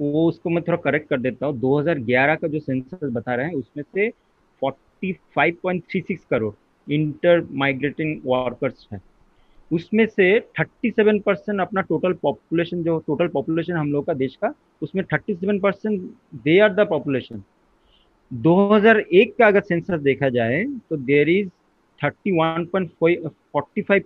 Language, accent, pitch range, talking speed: Hindi, native, 140-190 Hz, 135 wpm